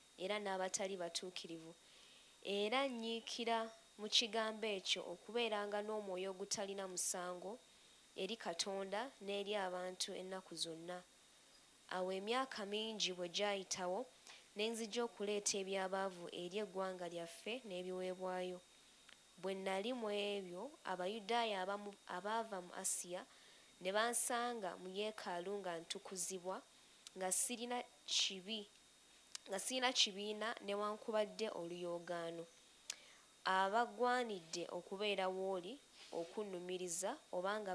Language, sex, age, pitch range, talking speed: English, female, 20-39, 185-220 Hz, 95 wpm